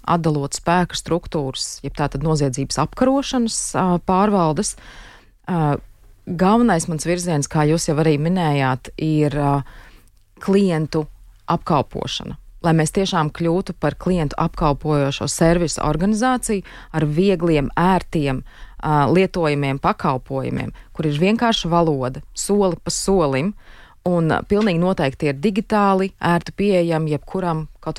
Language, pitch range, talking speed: Russian, 140-175 Hz, 115 wpm